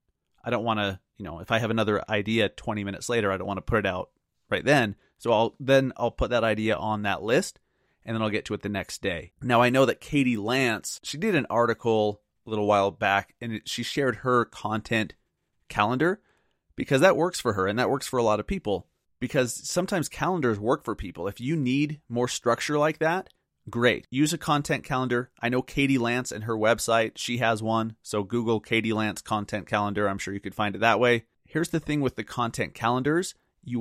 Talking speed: 220 wpm